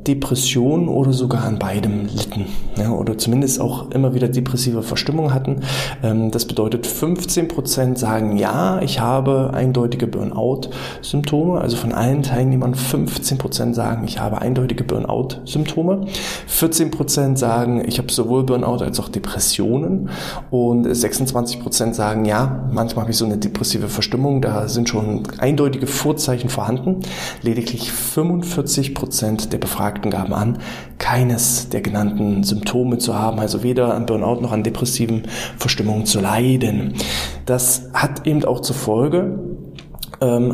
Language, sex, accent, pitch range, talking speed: German, male, German, 115-135 Hz, 130 wpm